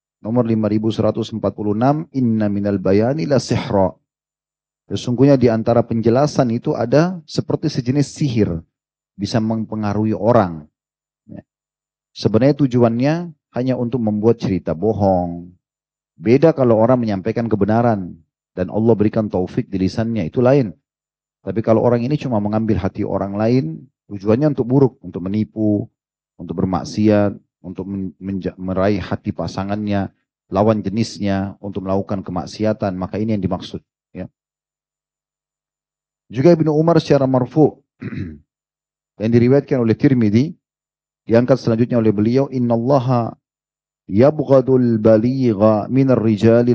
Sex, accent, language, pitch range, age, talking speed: male, native, Indonesian, 100-130 Hz, 30-49, 110 wpm